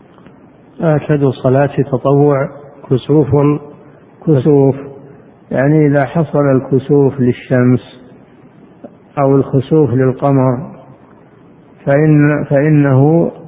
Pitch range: 130-150 Hz